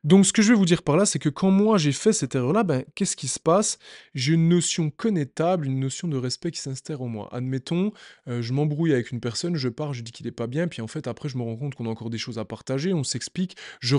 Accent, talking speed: French, 285 wpm